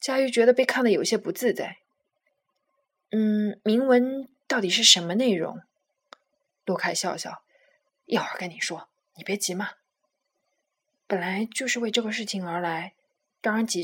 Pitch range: 190-260 Hz